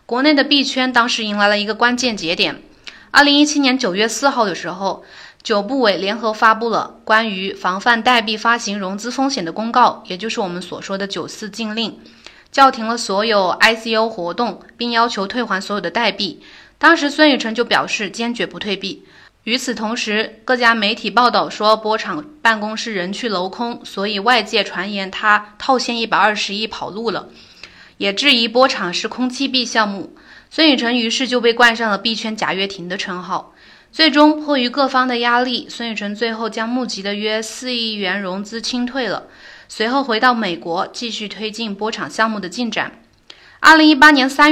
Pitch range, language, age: 205-250 Hz, Chinese, 20-39